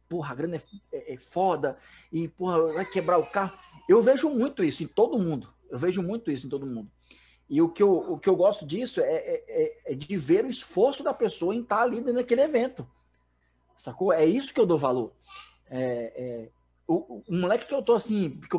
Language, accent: Portuguese, Brazilian